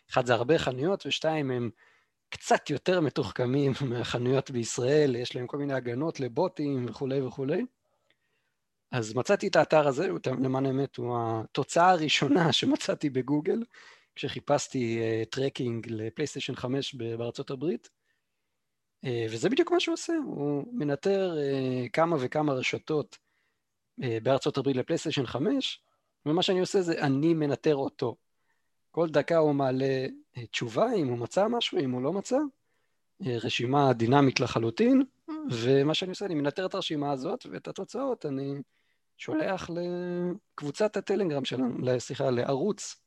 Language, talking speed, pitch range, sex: Hebrew, 125 wpm, 125-170 Hz, male